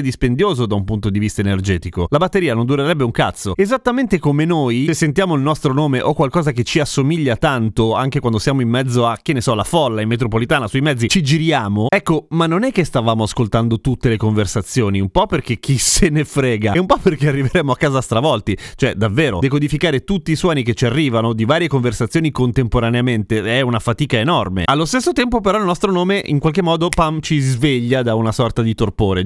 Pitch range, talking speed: 120-170 Hz, 215 wpm